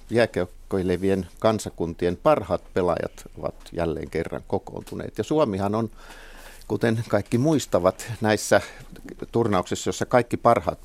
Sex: male